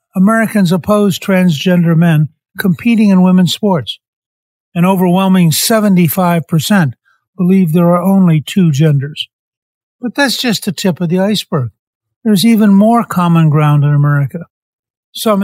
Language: English